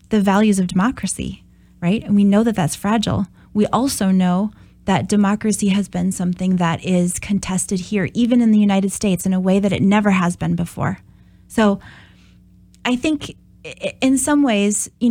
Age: 20-39